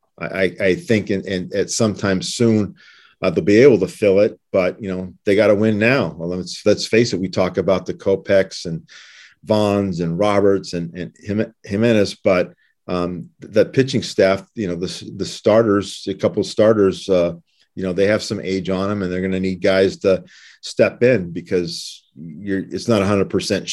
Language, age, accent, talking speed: English, 50-69, American, 200 wpm